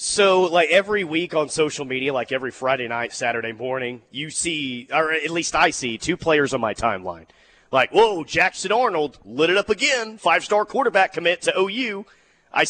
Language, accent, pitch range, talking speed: English, American, 130-170 Hz, 185 wpm